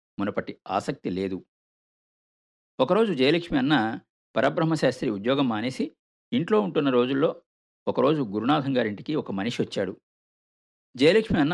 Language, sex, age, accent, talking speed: Telugu, male, 50-69, native, 105 wpm